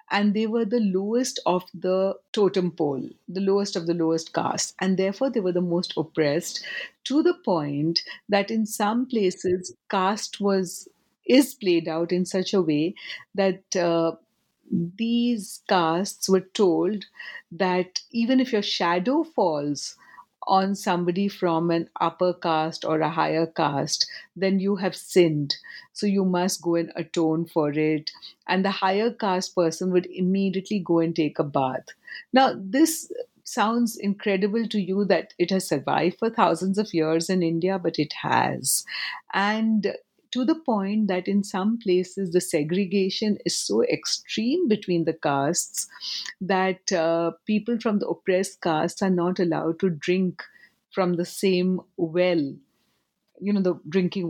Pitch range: 165-205 Hz